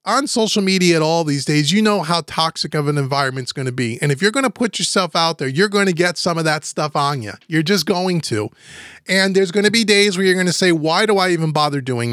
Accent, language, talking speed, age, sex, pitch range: American, English, 285 wpm, 30-49, male, 150-195 Hz